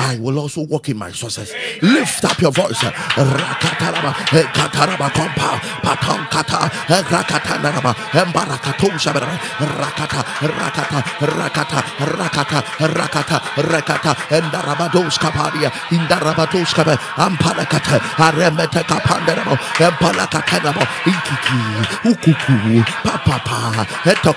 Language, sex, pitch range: English, male, 145-180 Hz